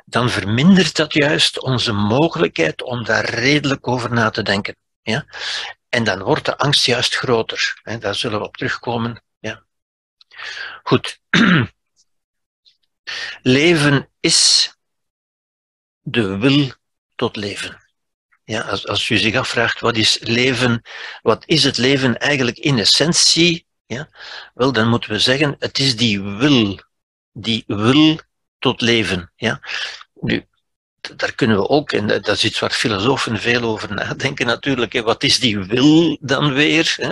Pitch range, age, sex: 115-145 Hz, 60-79, male